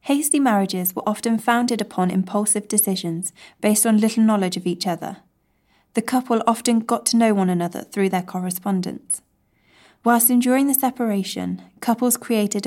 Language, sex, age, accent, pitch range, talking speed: English, female, 20-39, British, 185-230 Hz, 150 wpm